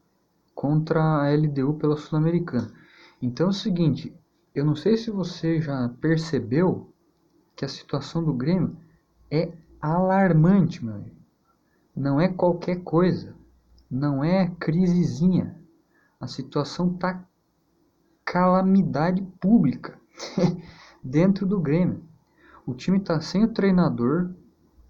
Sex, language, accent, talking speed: male, Portuguese, Brazilian, 105 wpm